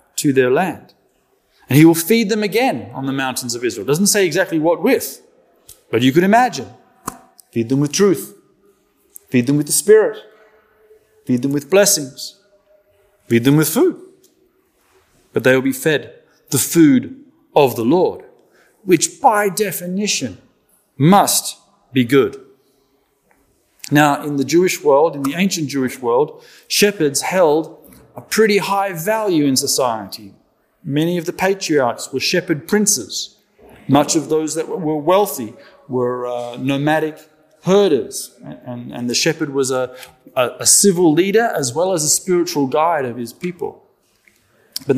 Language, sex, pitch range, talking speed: English, male, 140-215 Hz, 150 wpm